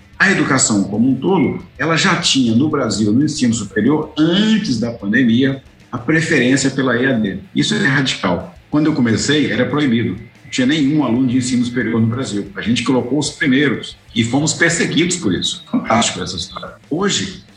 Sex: male